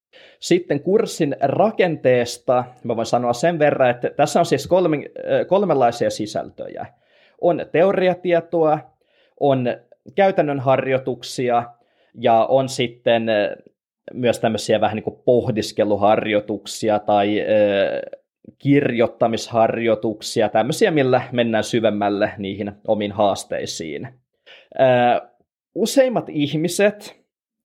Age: 20-39